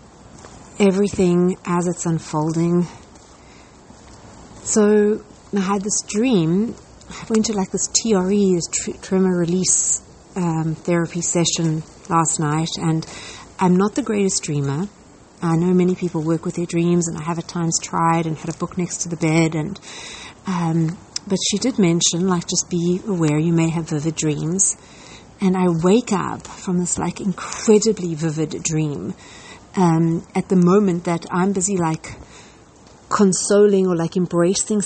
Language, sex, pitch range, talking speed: English, female, 165-195 Hz, 150 wpm